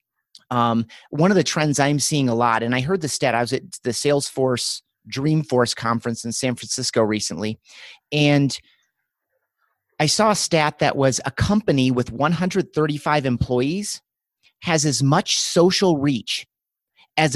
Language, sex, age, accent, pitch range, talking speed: English, male, 30-49, American, 125-155 Hz, 150 wpm